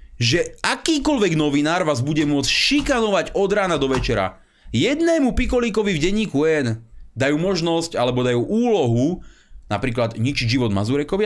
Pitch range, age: 115-195 Hz, 30-49